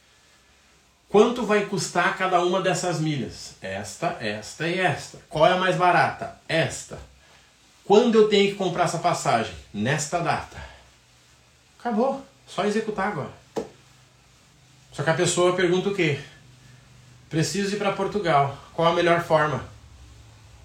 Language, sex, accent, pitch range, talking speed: Portuguese, male, Brazilian, 125-190 Hz, 130 wpm